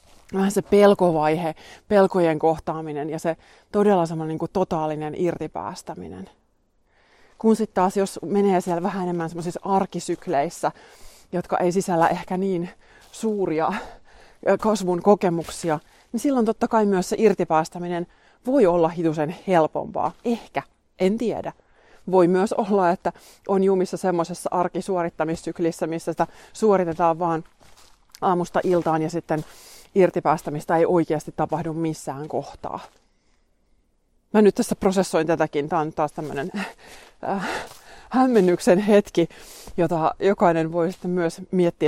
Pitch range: 155-190 Hz